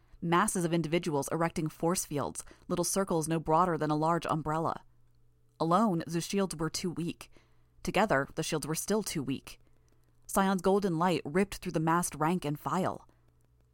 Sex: female